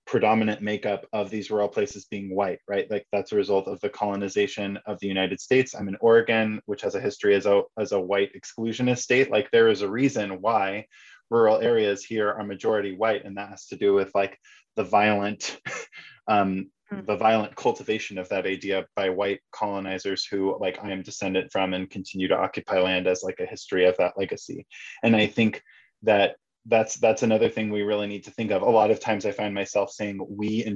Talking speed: 210 wpm